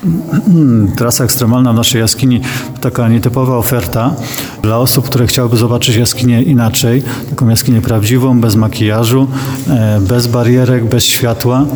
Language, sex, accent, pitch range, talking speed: Polish, male, native, 115-135 Hz, 130 wpm